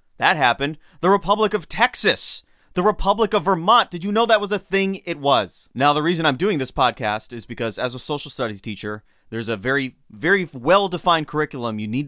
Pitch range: 120-160 Hz